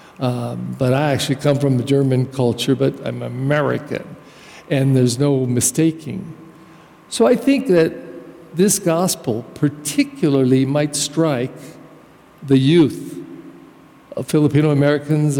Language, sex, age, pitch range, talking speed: English, male, 50-69, 140-205 Hz, 115 wpm